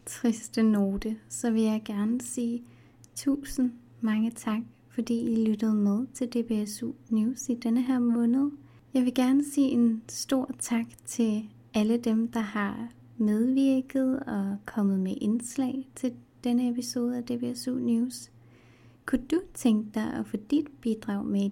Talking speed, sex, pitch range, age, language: 150 wpm, female, 200-250 Hz, 30-49, Danish